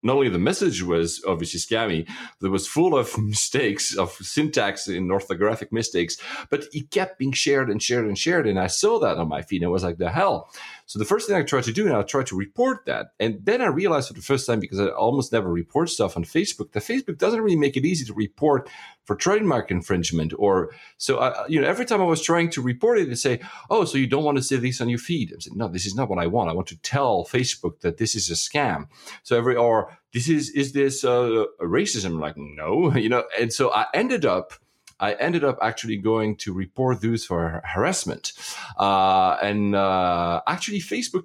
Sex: male